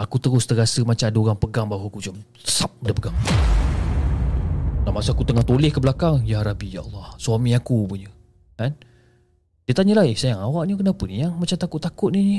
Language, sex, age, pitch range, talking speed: Malay, male, 20-39, 100-125 Hz, 200 wpm